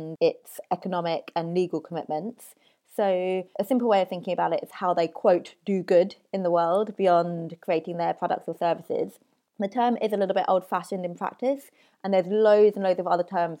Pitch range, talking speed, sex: 165-195 Hz, 200 wpm, female